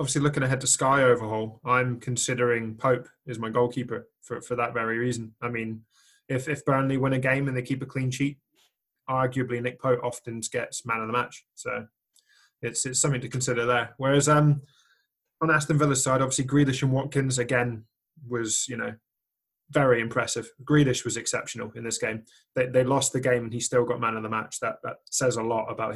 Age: 20-39